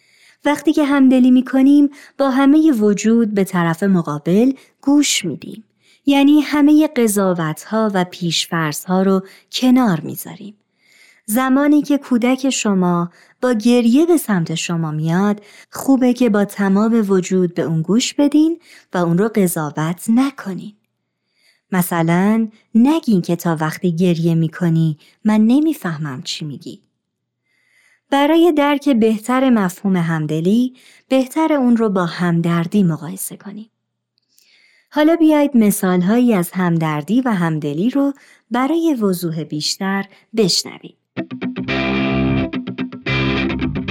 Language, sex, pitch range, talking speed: Persian, male, 165-255 Hz, 110 wpm